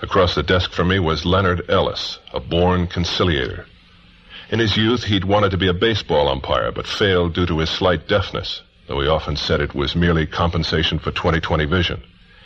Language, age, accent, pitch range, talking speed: English, 50-69, American, 85-95 Hz, 190 wpm